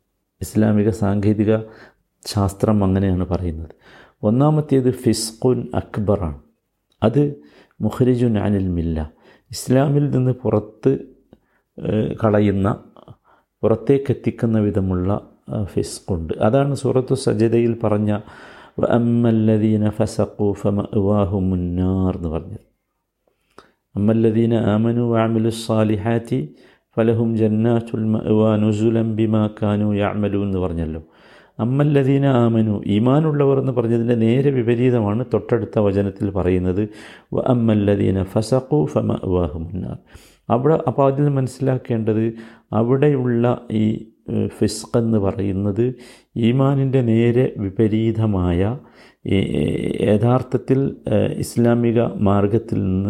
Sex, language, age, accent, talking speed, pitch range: male, Malayalam, 50-69, native, 85 wpm, 100-120 Hz